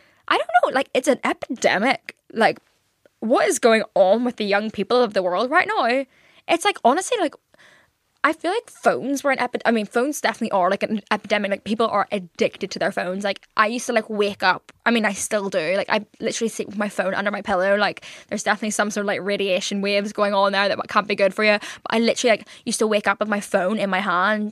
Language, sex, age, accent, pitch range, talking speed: English, female, 10-29, British, 205-250 Hz, 245 wpm